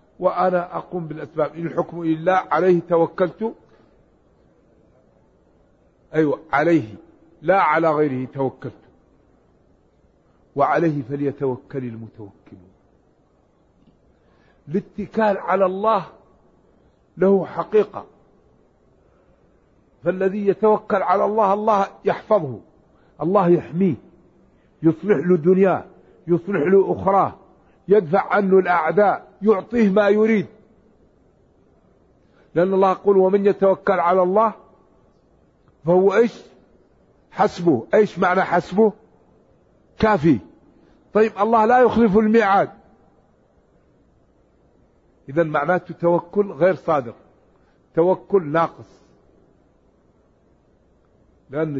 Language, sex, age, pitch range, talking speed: Arabic, male, 60-79, 165-205 Hz, 80 wpm